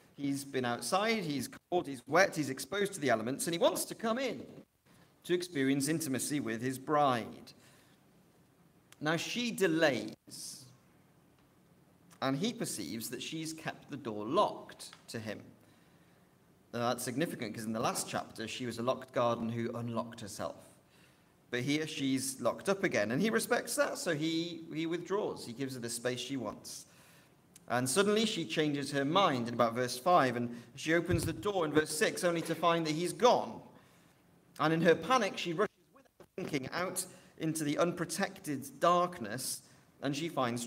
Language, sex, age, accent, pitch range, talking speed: English, male, 40-59, British, 130-180 Hz, 170 wpm